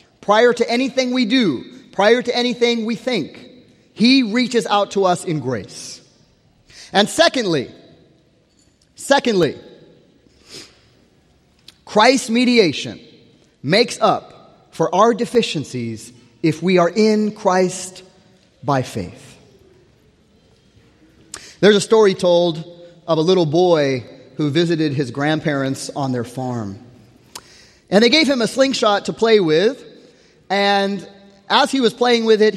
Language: English